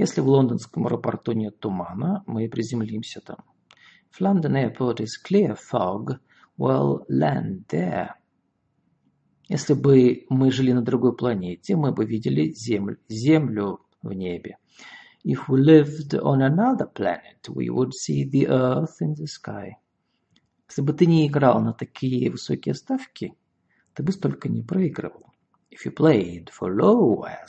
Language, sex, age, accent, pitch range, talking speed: Russian, male, 50-69, native, 110-150 Hz, 140 wpm